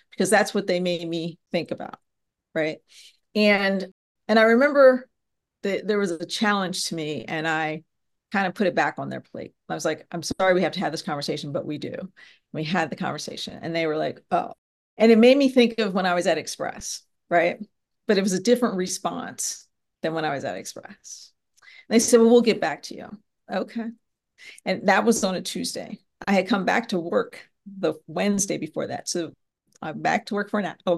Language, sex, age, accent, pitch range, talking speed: English, female, 40-59, American, 170-210 Hz, 210 wpm